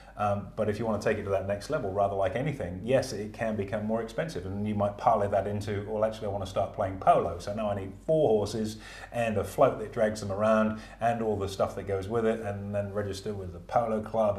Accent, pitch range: British, 95-110 Hz